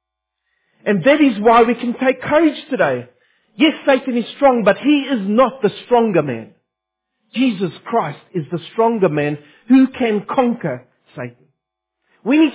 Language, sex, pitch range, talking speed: English, male, 155-245 Hz, 155 wpm